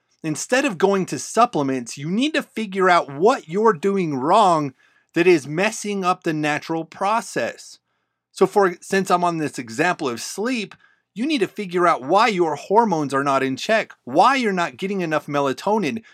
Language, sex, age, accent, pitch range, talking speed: English, male, 30-49, American, 135-190 Hz, 180 wpm